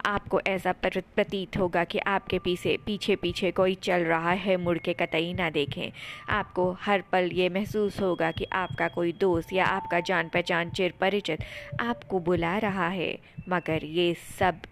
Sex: female